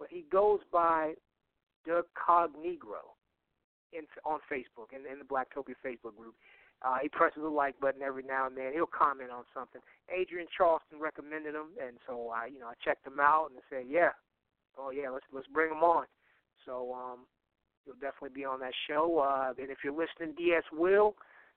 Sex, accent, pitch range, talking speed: male, American, 135-190 Hz, 195 wpm